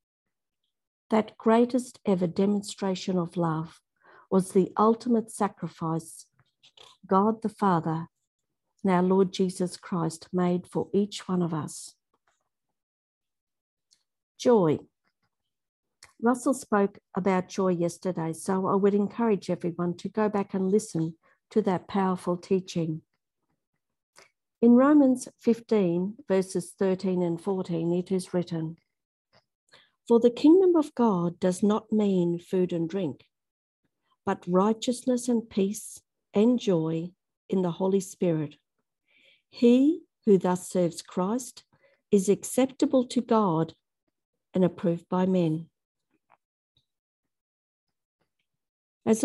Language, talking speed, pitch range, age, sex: English, 105 wpm, 175-220 Hz, 60-79, female